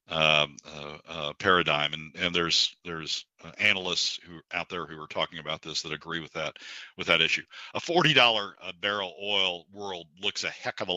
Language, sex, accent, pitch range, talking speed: English, male, American, 80-95 Hz, 190 wpm